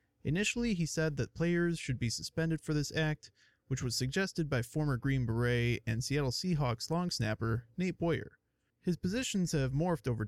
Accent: American